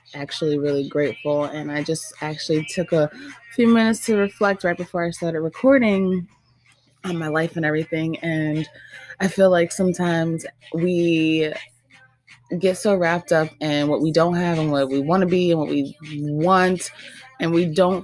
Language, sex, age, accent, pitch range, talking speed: English, female, 20-39, American, 150-180 Hz, 170 wpm